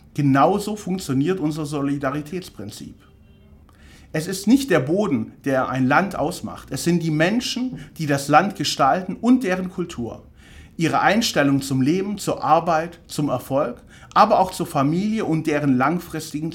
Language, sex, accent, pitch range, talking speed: German, male, German, 130-185 Hz, 140 wpm